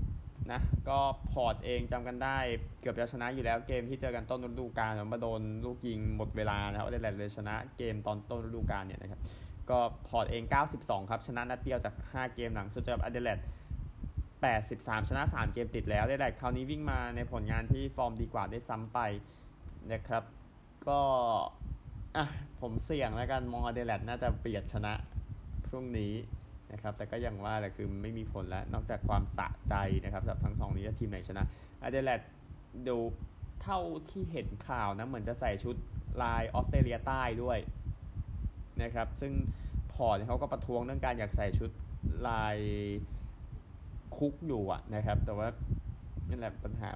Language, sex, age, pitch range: Thai, male, 20-39, 100-120 Hz